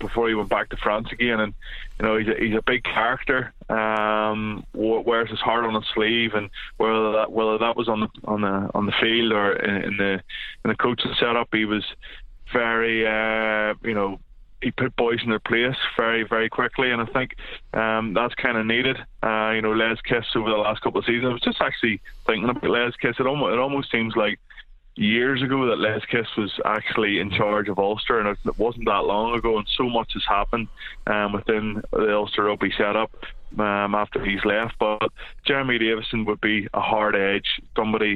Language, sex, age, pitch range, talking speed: English, male, 20-39, 105-115 Hz, 210 wpm